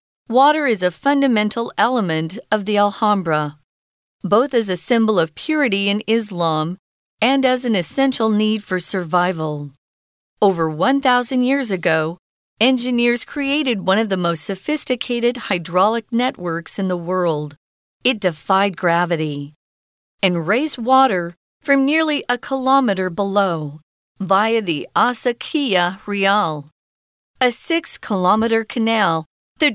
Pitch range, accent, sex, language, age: 175-250 Hz, American, female, Chinese, 40-59